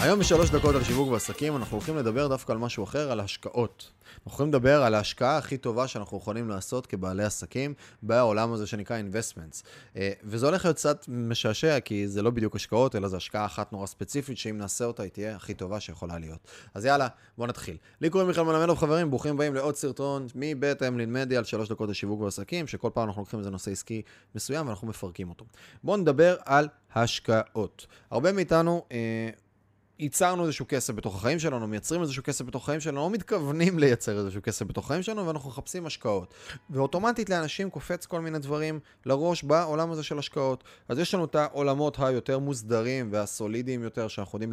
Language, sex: Hebrew, male